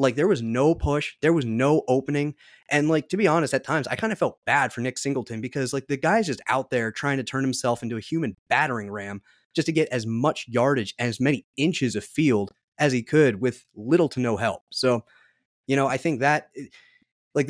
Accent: American